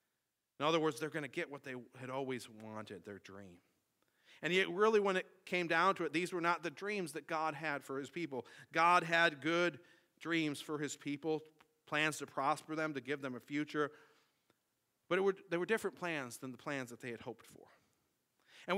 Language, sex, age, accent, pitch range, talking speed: English, male, 40-59, American, 140-175 Hz, 205 wpm